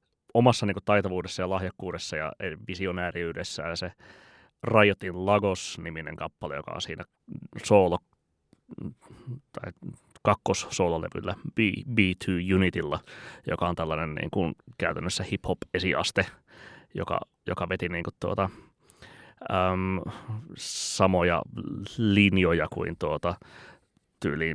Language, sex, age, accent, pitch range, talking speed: Finnish, male, 30-49, native, 90-105 Hz, 95 wpm